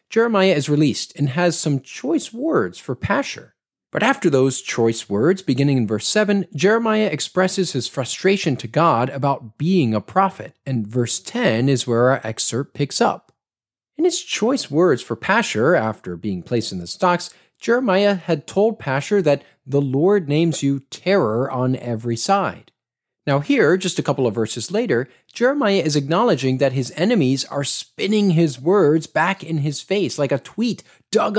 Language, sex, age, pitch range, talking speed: English, male, 40-59, 130-195 Hz, 170 wpm